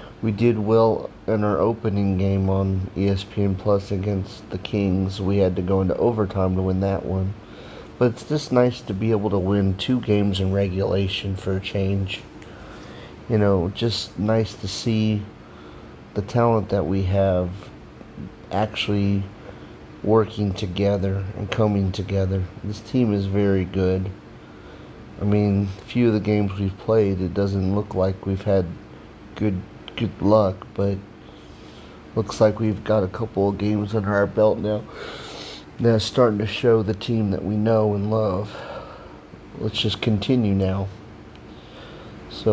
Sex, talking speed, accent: male, 150 wpm, American